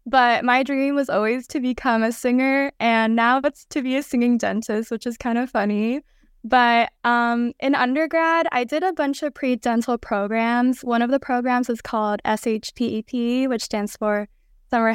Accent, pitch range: American, 215-265 Hz